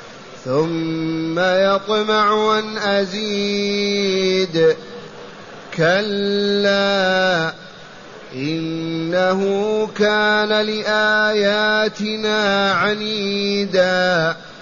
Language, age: Arabic, 30-49